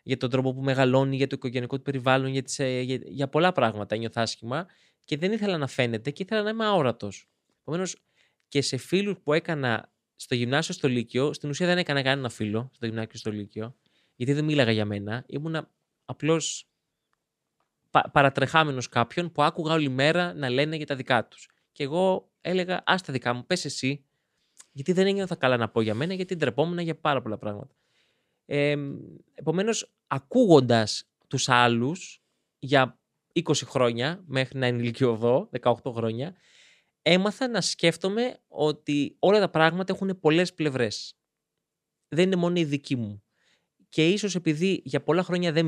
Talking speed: 170 wpm